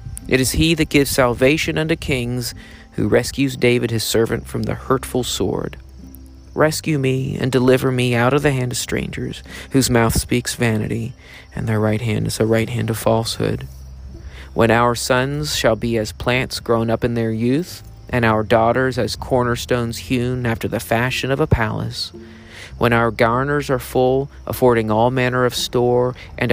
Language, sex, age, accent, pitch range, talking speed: English, male, 40-59, American, 105-125 Hz, 175 wpm